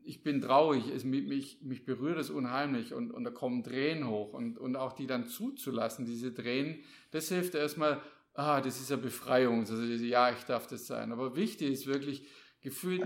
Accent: German